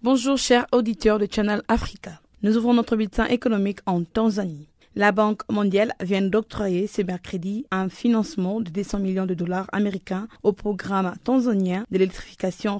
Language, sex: French, female